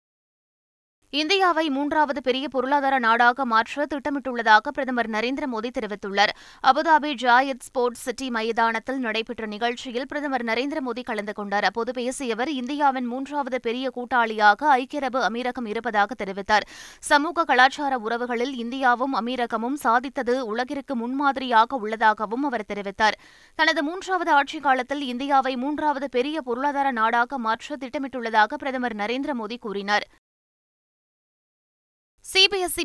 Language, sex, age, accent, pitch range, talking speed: Tamil, female, 20-39, native, 230-280 Hz, 105 wpm